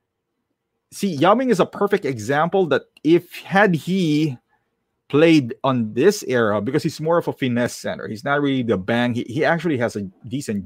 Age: 30-49